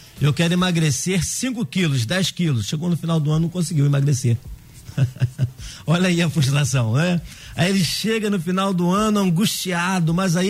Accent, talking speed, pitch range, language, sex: Brazilian, 170 wpm, 140-175 Hz, Portuguese, male